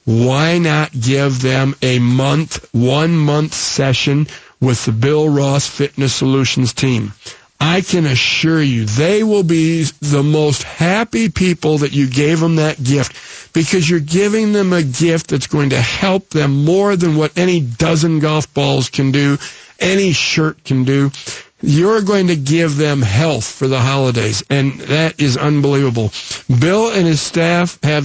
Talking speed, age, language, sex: 160 wpm, 50-69, English, male